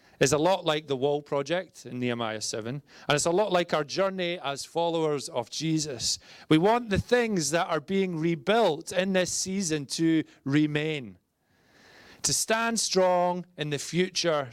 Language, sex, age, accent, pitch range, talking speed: English, male, 30-49, British, 145-195 Hz, 160 wpm